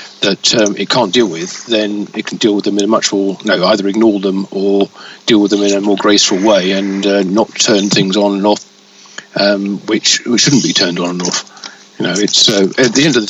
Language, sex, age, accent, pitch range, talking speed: English, male, 50-69, British, 95-105 Hz, 250 wpm